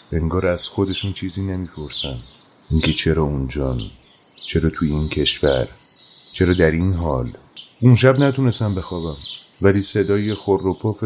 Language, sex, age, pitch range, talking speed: Persian, male, 30-49, 80-105 Hz, 125 wpm